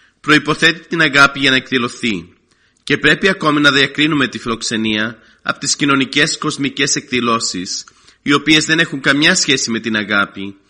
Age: 30-49